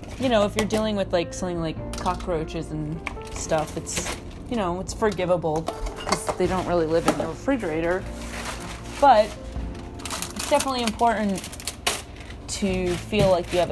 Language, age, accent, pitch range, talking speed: English, 30-49, American, 155-205 Hz, 150 wpm